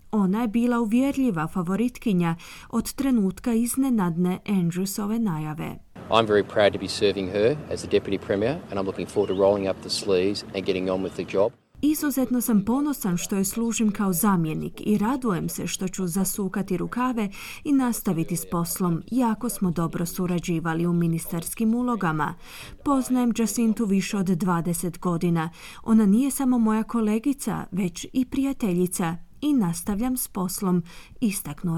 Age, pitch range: 20-39, 180-235 Hz